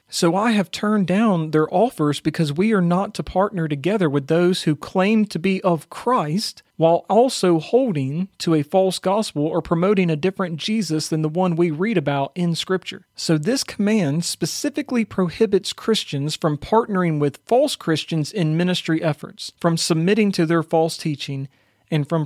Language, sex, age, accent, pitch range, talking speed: English, male, 40-59, American, 155-195 Hz, 175 wpm